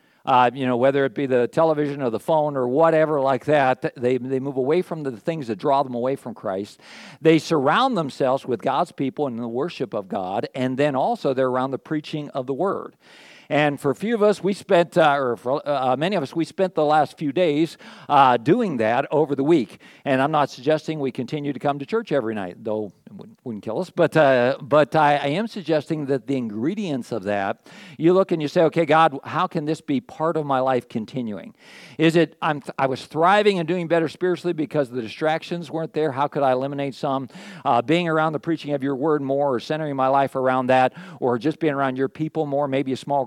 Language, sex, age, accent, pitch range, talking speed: English, male, 50-69, American, 130-165 Hz, 230 wpm